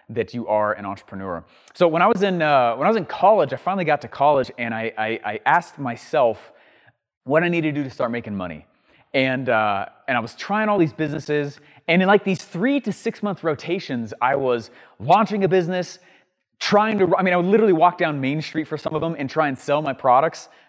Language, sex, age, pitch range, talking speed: English, male, 30-49, 125-185 Hz, 230 wpm